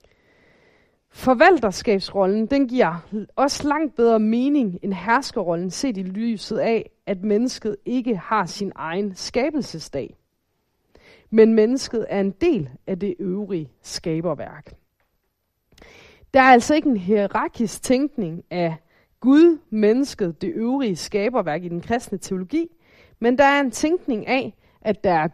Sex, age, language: female, 30-49, Danish